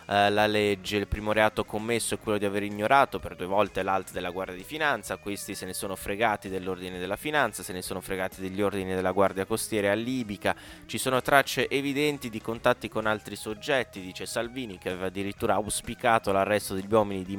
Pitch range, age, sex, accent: 100-115 Hz, 20-39, male, native